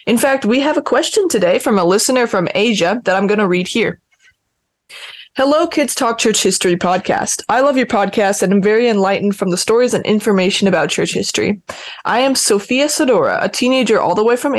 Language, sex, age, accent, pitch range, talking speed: English, female, 20-39, American, 190-250 Hz, 205 wpm